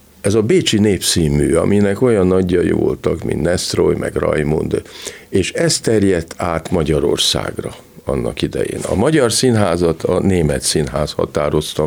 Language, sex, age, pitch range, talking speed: Hungarian, male, 50-69, 80-115 Hz, 130 wpm